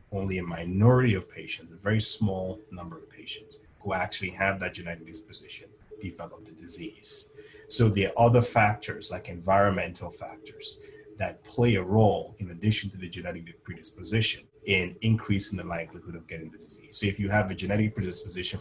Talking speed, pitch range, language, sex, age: 170 wpm, 95-110 Hz, English, male, 30-49